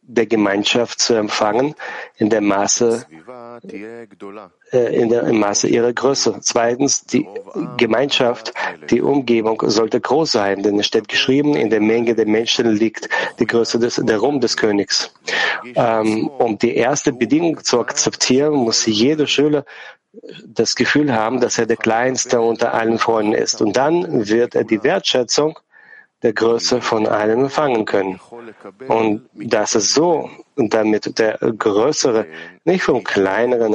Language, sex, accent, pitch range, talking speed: German, male, German, 110-125 Hz, 140 wpm